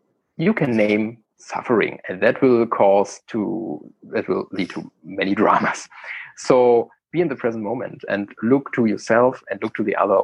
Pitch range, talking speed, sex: 120-160 Hz, 175 wpm, male